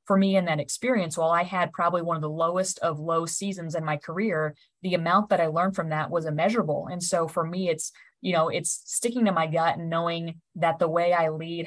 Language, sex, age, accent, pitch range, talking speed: English, female, 20-39, American, 160-185 Hz, 240 wpm